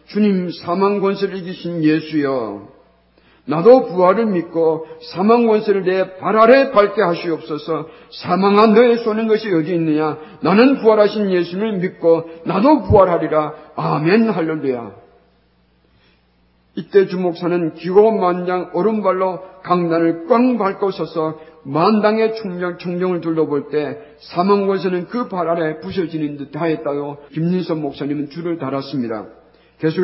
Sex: male